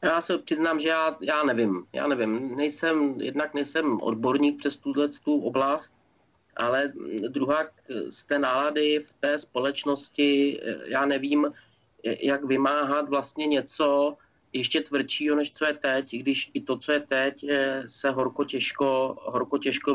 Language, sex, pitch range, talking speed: Czech, male, 135-150 Hz, 140 wpm